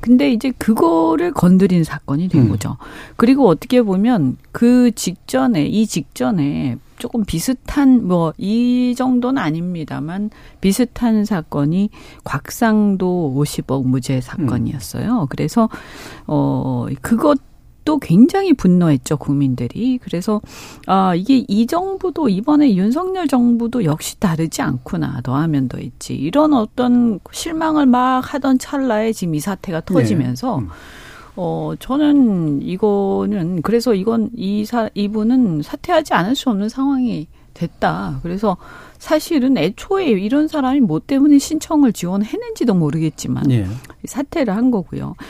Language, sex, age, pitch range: Korean, female, 40-59, 160-260 Hz